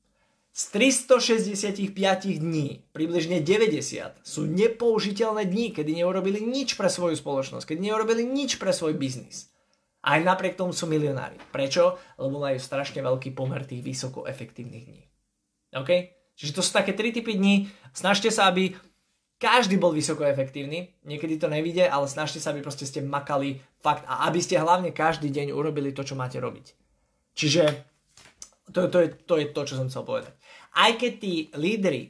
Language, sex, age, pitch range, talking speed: Slovak, male, 20-39, 145-195 Hz, 160 wpm